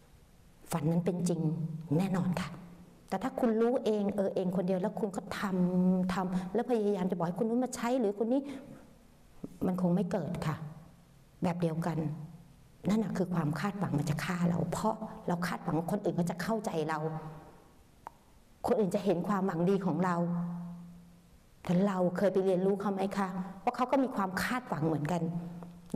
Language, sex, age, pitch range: Thai, female, 60-79, 160-200 Hz